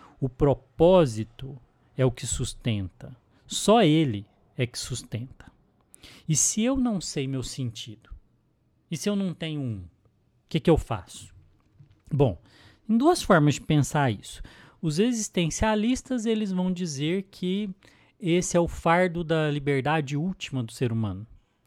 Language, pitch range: Portuguese, 125-190 Hz